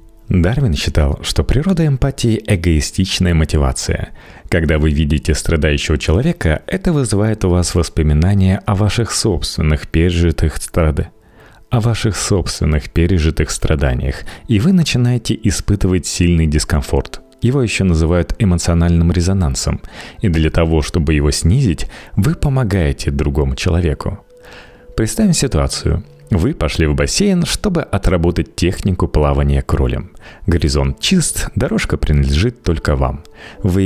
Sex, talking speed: male, 110 wpm